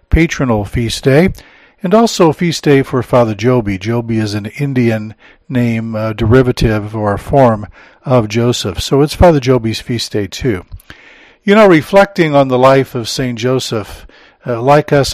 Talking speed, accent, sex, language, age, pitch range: 155 wpm, American, male, English, 50-69, 110-140 Hz